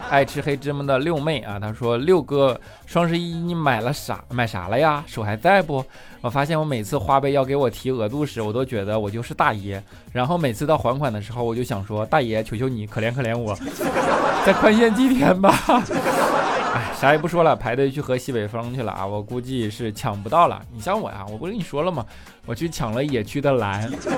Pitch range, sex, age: 115-155 Hz, male, 20-39